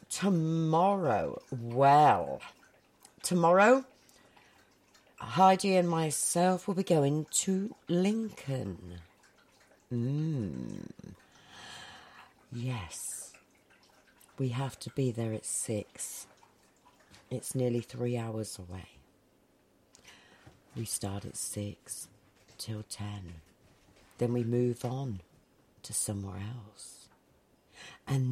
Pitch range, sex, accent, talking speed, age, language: 110-170 Hz, female, British, 85 wpm, 50-69, English